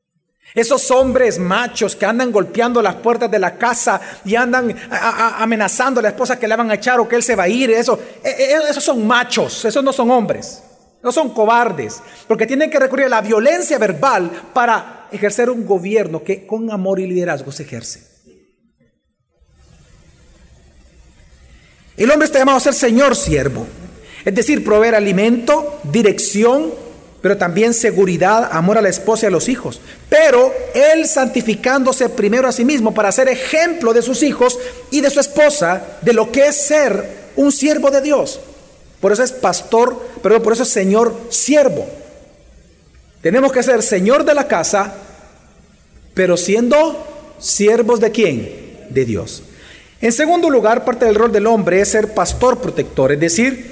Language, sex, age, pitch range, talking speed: Spanish, male, 40-59, 200-260 Hz, 165 wpm